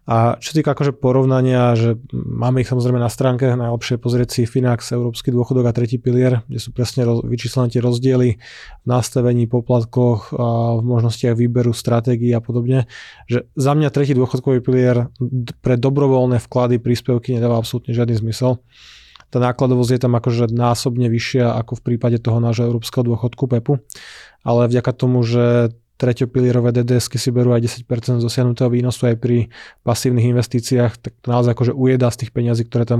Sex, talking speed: male, 165 wpm